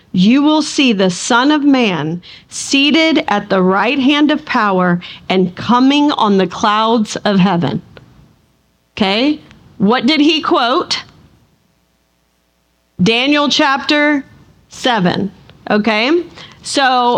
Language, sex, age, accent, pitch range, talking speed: English, female, 40-59, American, 210-280 Hz, 110 wpm